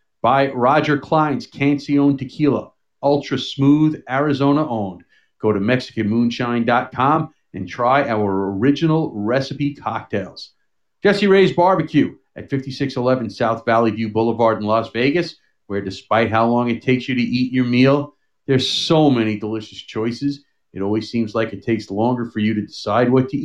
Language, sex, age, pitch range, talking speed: English, male, 40-59, 115-155 Hz, 145 wpm